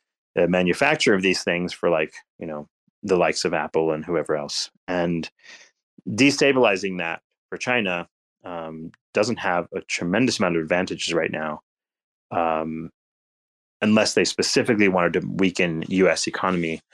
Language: English